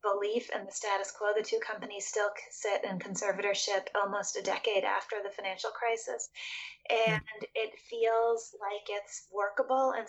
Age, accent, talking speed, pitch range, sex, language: 20-39, American, 155 wpm, 190-215 Hz, female, English